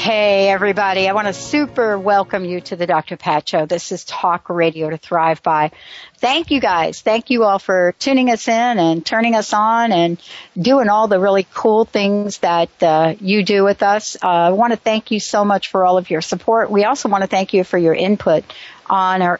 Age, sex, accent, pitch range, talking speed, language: 60-79, female, American, 165-215 Hz, 220 wpm, English